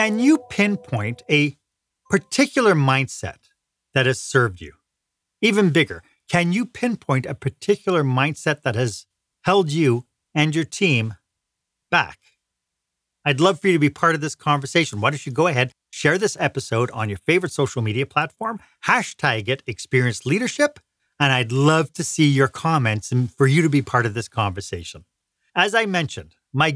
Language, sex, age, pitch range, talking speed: English, male, 40-59, 125-180 Hz, 165 wpm